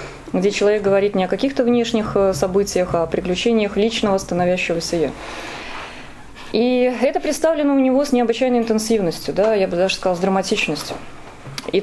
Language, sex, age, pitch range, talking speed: English, female, 20-39, 195-260 Hz, 150 wpm